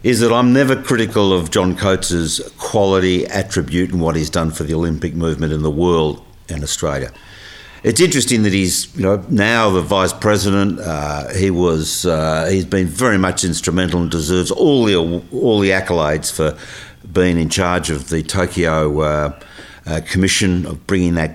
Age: 60-79